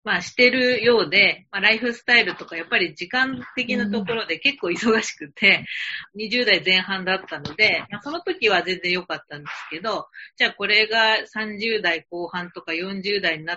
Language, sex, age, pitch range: Japanese, female, 40-59, 165-220 Hz